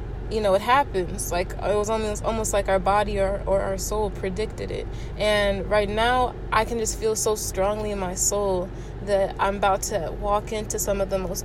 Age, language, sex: 20-39, English, female